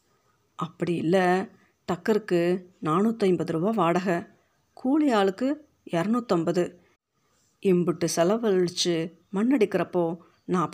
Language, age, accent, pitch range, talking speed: Tamil, 50-69, native, 170-220 Hz, 85 wpm